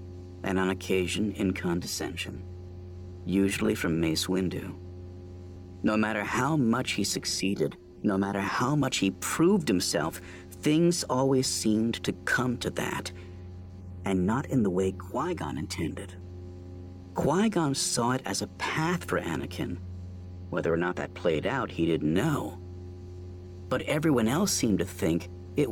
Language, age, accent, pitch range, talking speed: English, 50-69, American, 90-105 Hz, 140 wpm